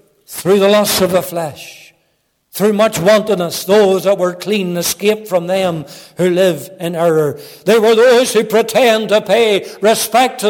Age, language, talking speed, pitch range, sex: 60-79, English, 165 wpm, 165-210 Hz, male